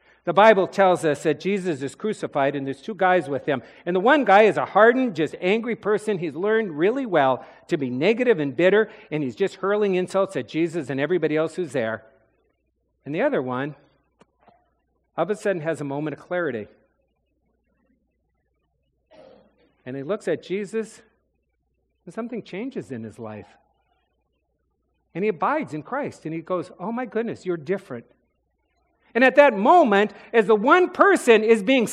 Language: English